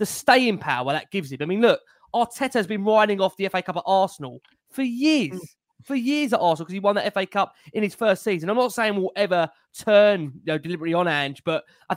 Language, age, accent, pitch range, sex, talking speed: English, 20-39, British, 165-205 Hz, male, 240 wpm